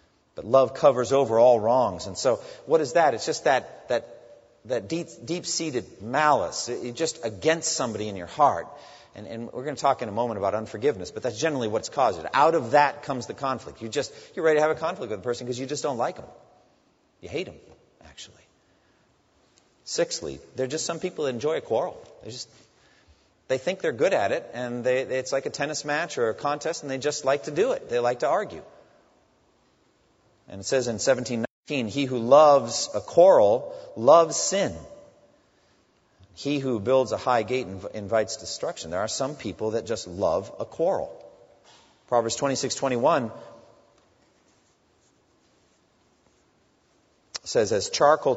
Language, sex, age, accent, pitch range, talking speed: English, male, 40-59, American, 115-155 Hz, 180 wpm